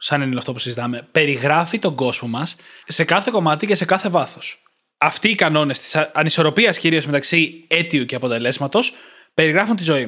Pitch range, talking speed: 150-205 Hz, 175 wpm